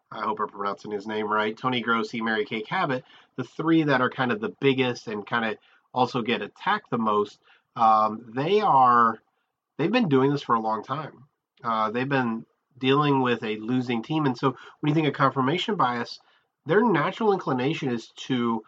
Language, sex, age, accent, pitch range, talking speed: English, male, 30-49, American, 125-165 Hz, 200 wpm